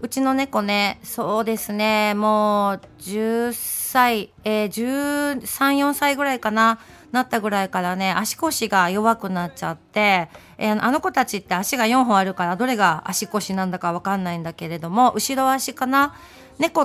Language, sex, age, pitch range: Japanese, female, 40-59, 190-240 Hz